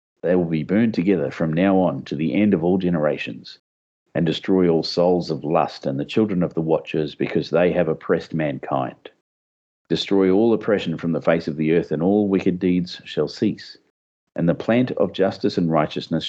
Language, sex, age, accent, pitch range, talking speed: English, male, 40-59, Australian, 80-100 Hz, 195 wpm